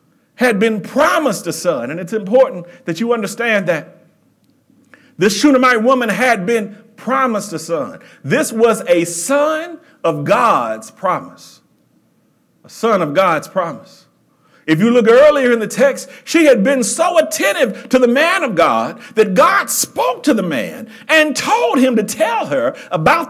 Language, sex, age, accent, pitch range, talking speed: English, male, 50-69, American, 225-285 Hz, 160 wpm